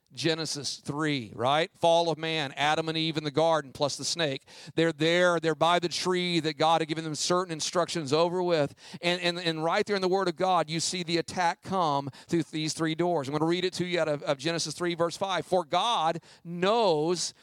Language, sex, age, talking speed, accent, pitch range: English, male, 40-59, 225 wpm, American, 155-210 Hz